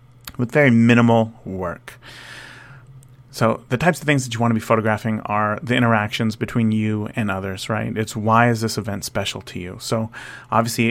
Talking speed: 180 wpm